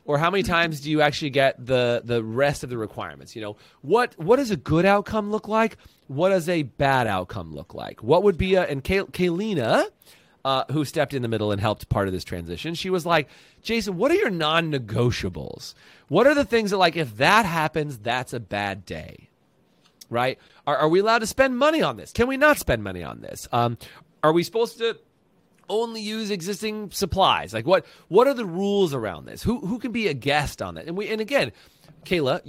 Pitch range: 120-195 Hz